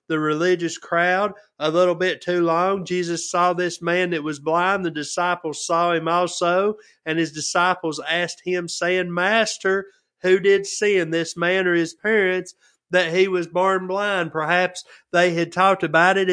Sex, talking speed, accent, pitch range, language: male, 175 wpm, American, 170-190 Hz, English